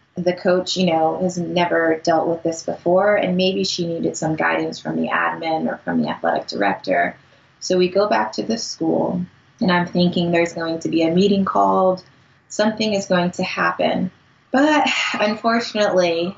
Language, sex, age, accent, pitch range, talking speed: English, female, 20-39, American, 135-185 Hz, 175 wpm